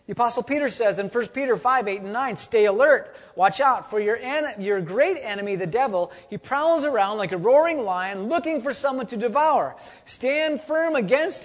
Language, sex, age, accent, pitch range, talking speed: English, male, 30-49, American, 195-280 Hz, 200 wpm